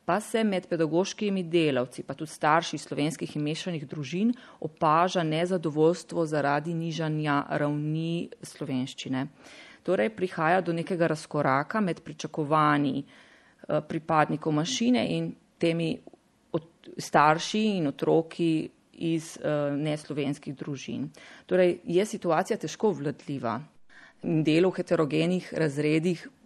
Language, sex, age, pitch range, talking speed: Italian, female, 30-49, 150-180 Hz, 100 wpm